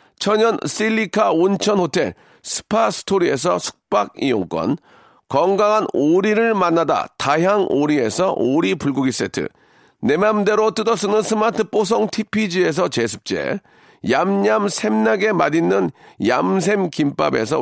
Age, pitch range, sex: 40-59, 160-220 Hz, male